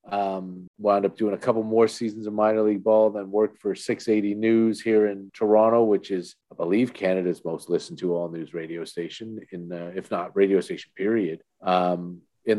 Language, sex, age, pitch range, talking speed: English, male, 40-59, 105-130 Hz, 195 wpm